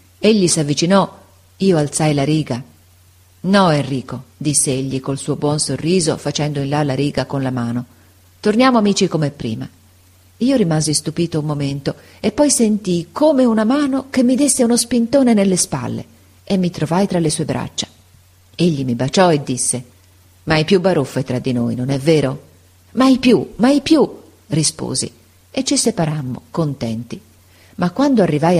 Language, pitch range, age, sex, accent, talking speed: Italian, 125-175 Hz, 40-59, female, native, 165 wpm